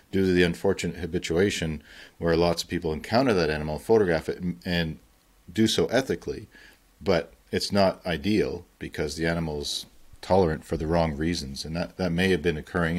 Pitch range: 75-85 Hz